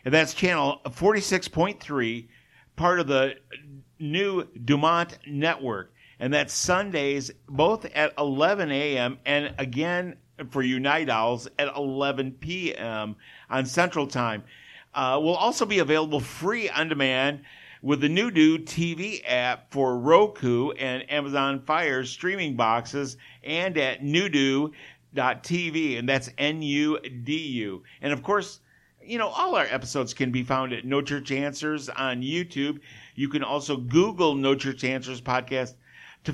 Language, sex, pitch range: English, male, 130-160 Hz